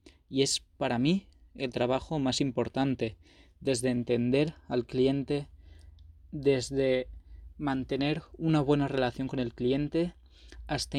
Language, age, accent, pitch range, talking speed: Spanish, 20-39, Spanish, 120-145 Hz, 115 wpm